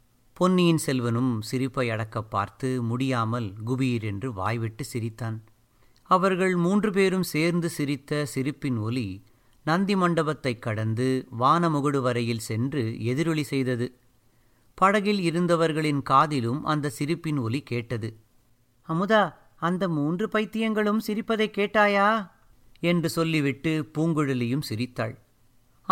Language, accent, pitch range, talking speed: Tamil, native, 120-155 Hz, 95 wpm